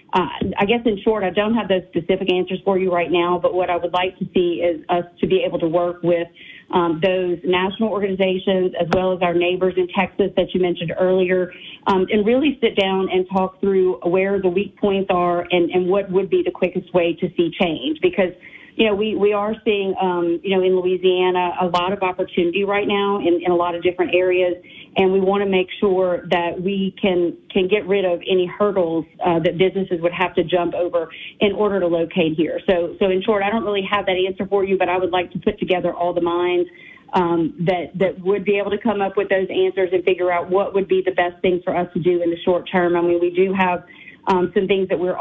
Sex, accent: female, American